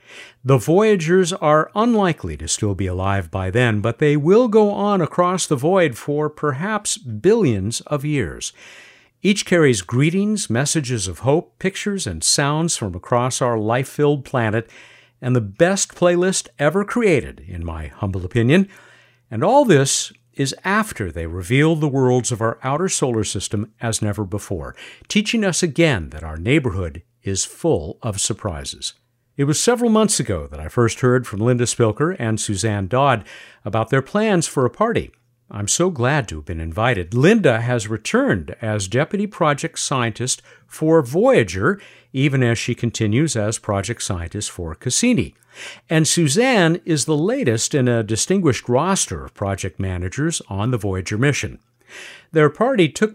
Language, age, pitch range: English, 60-79, 105-165 Hz